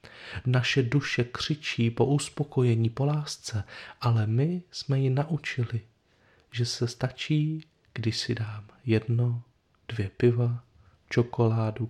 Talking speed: 110 wpm